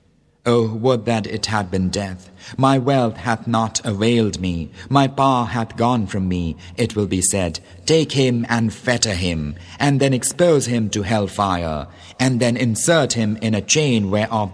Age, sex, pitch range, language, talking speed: 50-69, male, 95-120 Hz, English, 180 wpm